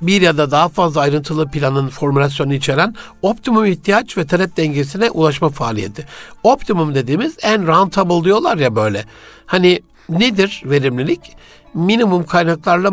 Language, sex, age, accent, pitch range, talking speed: Turkish, male, 60-79, native, 140-195 Hz, 130 wpm